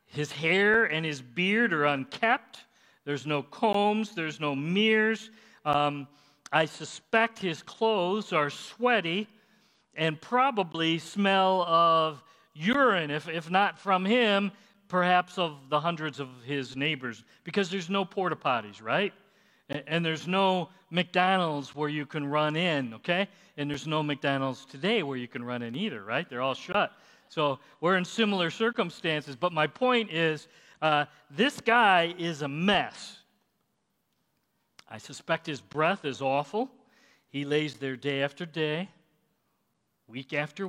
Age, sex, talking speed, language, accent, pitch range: 40-59, male, 145 wpm, English, American, 140-195 Hz